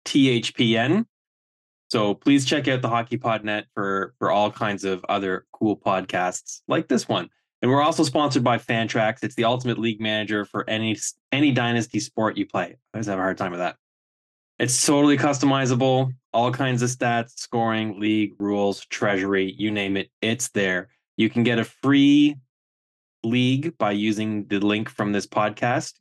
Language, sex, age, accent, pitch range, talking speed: English, male, 20-39, American, 100-130 Hz, 170 wpm